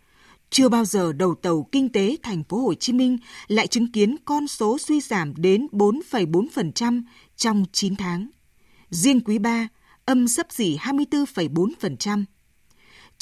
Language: Vietnamese